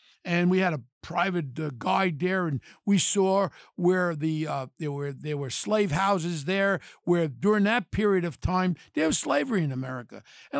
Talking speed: 185 wpm